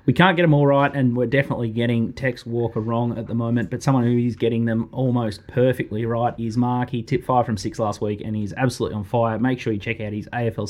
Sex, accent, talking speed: male, Australian, 260 wpm